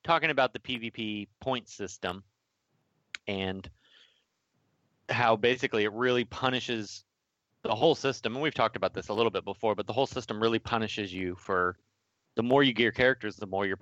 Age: 30-49